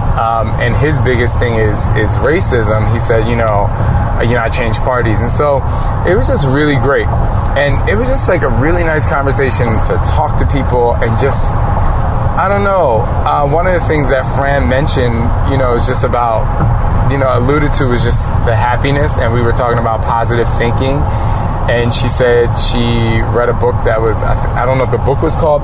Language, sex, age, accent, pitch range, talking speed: English, male, 20-39, American, 110-125 Hz, 200 wpm